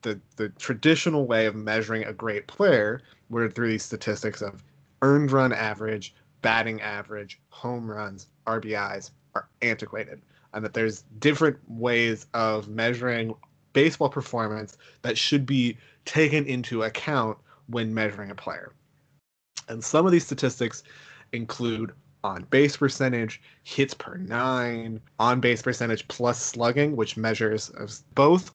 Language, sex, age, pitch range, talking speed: English, male, 20-39, 110-140 Hz, 130 wpm